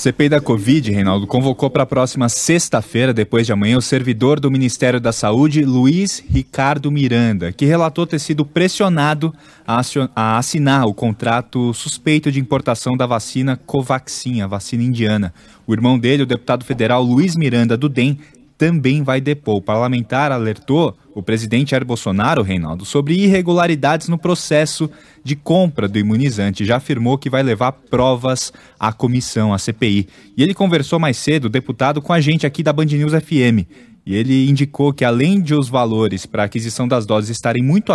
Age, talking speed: 20-39, 170 wpm